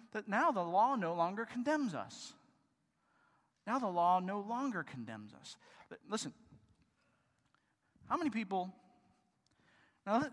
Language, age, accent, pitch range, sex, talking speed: English, 40-59, American, 170-245 Hz, male, 115 wpm